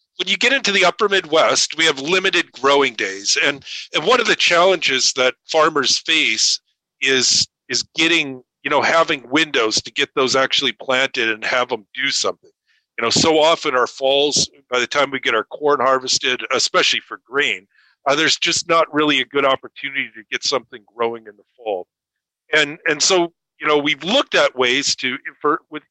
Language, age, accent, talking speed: English, 50-69, American, 190 wpm